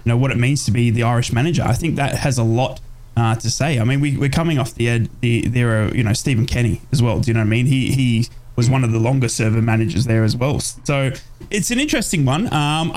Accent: Australian